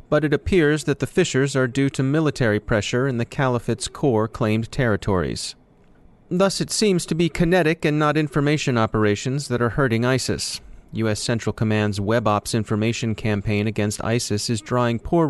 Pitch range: 110-135 Hz